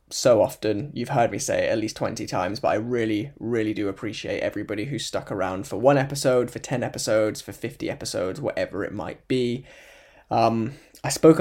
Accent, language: British, English